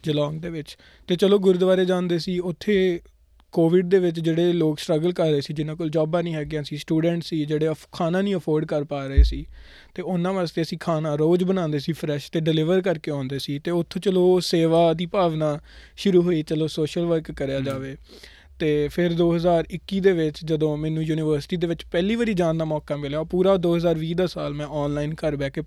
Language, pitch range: Punjabi, 150-180 Hz